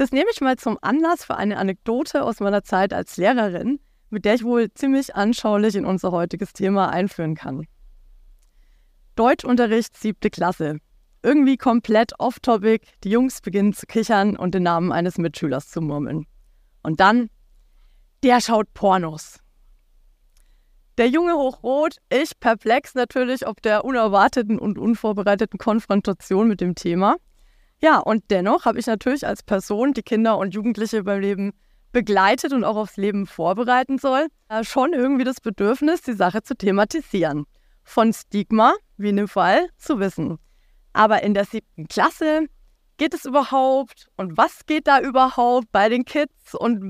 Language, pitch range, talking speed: German, 190-255 Hz, 150 wpm